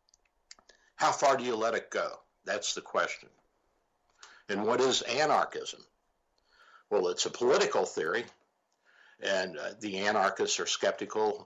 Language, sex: English, male